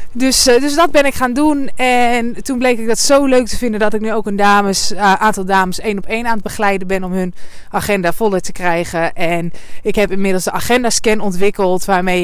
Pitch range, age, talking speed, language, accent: 185-255 Hz, 20-39, 230 wpm, Dutch, Dutch